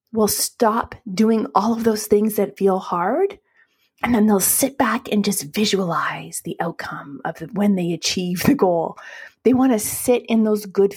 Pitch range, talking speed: 185-225 Hz, 180 wpm